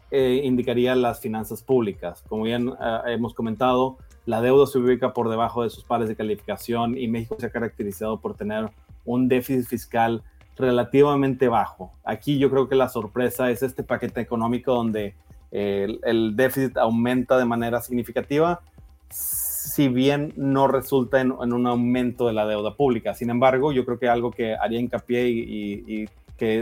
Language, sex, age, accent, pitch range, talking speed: Spanish, male, 30-49, Mexican, 115-130 Hz, 175 wpm